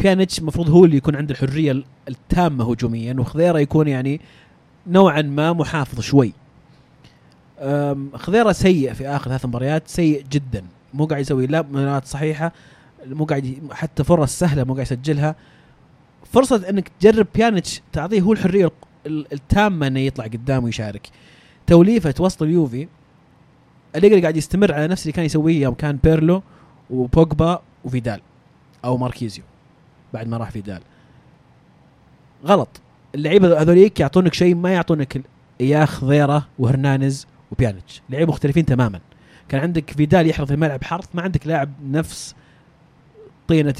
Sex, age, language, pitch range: male, 30-49, Arabic, 135-165 Hz